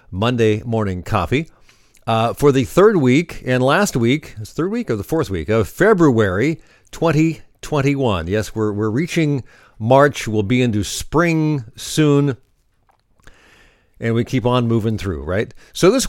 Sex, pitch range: male, 110-140 Hz